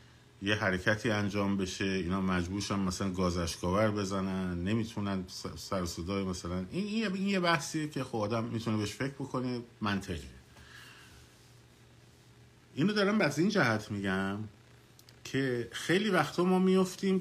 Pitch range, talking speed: 95-135 Hz, 120 wpm